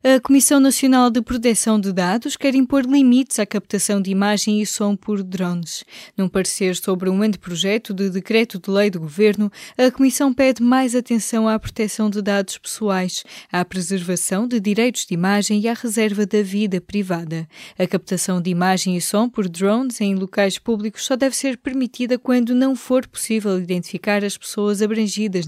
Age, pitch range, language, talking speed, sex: 20-39, 190-245 Hz, Portuguese, 175 wpm, female